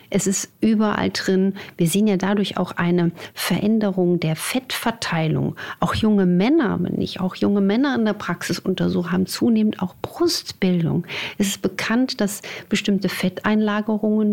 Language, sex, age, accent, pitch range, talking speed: German, female, 50-69, German, 180-210 Hz, 145 wpm